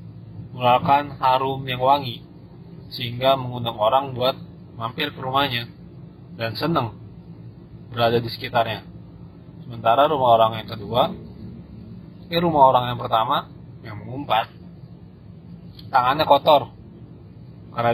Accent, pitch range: native, 115-140 Hz